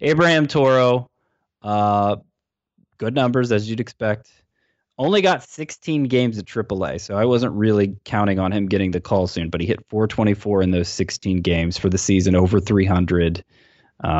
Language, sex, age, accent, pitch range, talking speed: English, male, 20-39, American, 100-135 Hz, 160 wpm